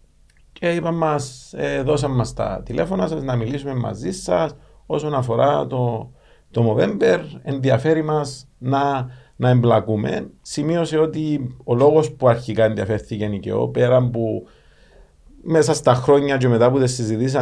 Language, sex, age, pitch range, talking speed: Greek, male, 50-69, 110-135 Hz, 140 wpm